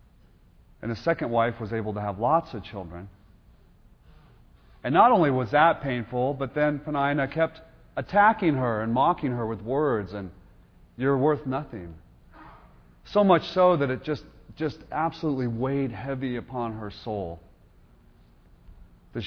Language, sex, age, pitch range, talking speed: English, male, 40-59, 90-145 Hz, 145 wpm